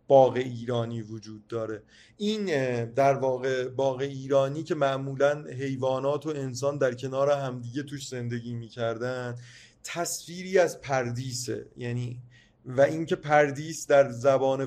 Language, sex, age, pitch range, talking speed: Persian, male, 30-49, 120-140 Hz, 120 wpm